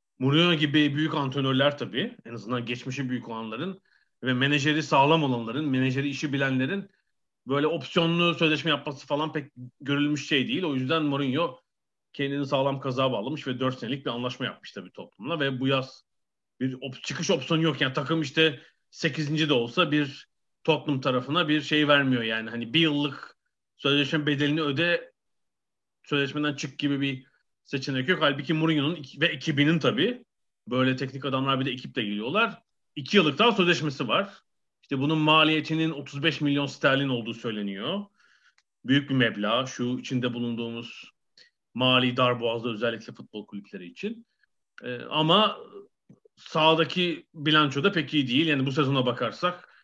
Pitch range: 130-160 Hz